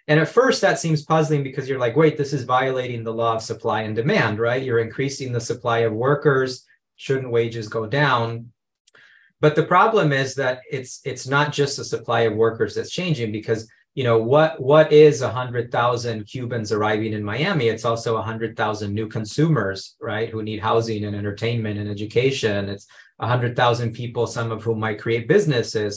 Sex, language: male, English